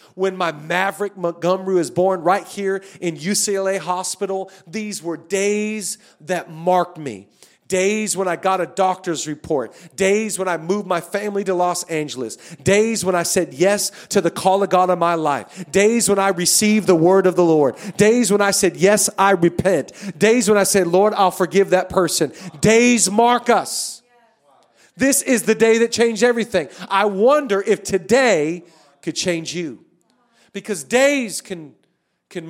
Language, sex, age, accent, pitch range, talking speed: English, male, 40-59, American, 185-240 Hz, 170 wpm